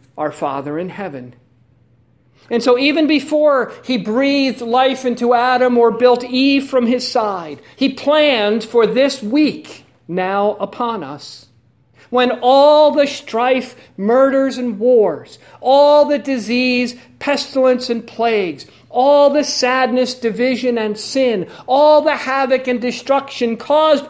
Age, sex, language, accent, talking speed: 50-69, male, English, American, 130 wpm